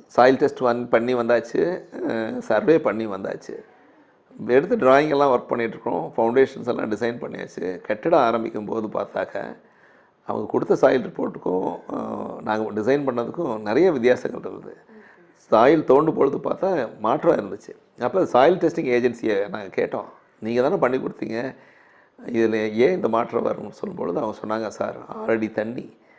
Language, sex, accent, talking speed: Tamil, male, native, 130 wpm